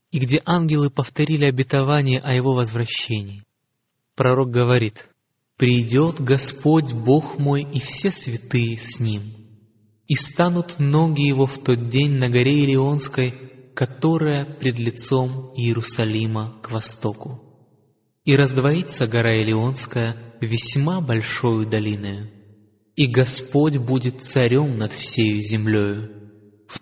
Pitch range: 115-145 Hz